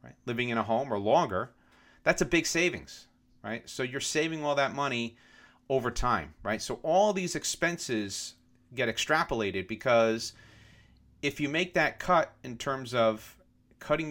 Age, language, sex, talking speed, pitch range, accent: 40-59, English, male, 155 wpm, 110-145 Hz, American